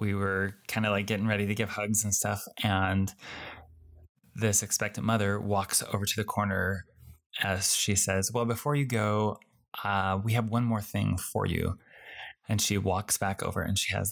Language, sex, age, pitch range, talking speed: English, male, 20-39, 95-110 Hz, 185 wpm